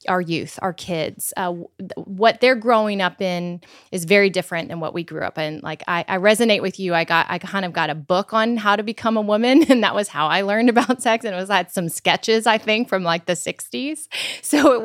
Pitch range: 175-220 Hz